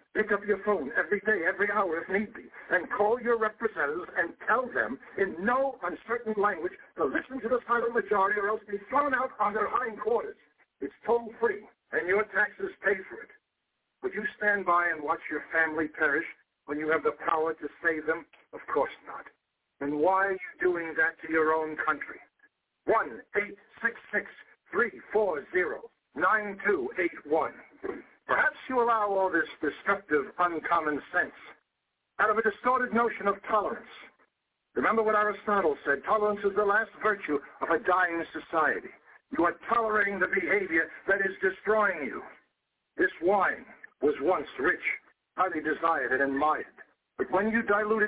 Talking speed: 160 wpm